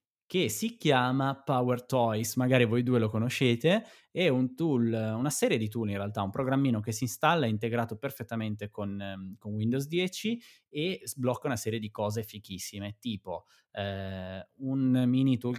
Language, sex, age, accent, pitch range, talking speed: Italian, male, 20-39, native, 105-125 Hz, 165 wpm